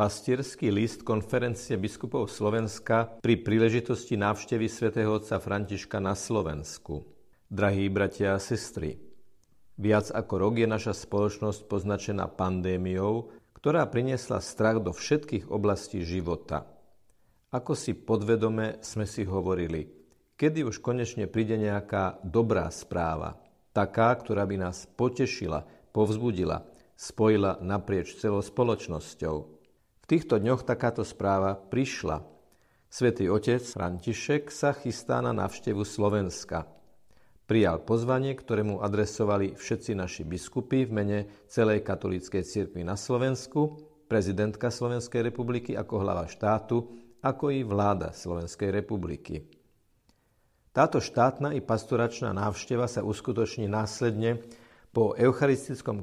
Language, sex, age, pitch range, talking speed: Slovak, male, 50-69, 95-120 Hz, 110 wpm